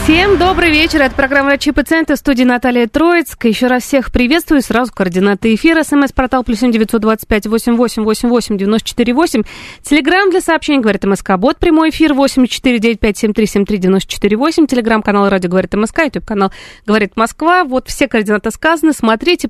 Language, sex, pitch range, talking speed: Russian, female, 210-285 Hz, 130 wpm